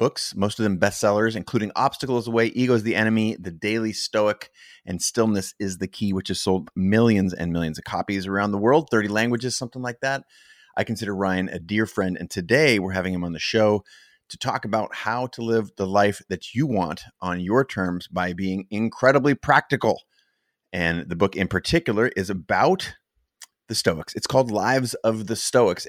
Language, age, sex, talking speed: English, 30-49, male, 195 wpm